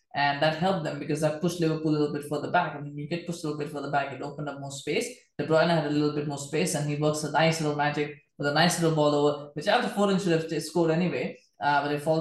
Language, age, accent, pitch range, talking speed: English, 20-39, Indian, 145-170 Hz, 305 wpm